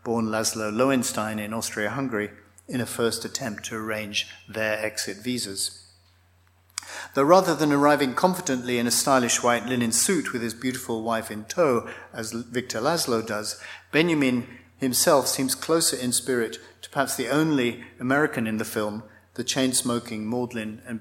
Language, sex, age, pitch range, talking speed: English, male, 50-69, 105-125 Hz, 150 wpm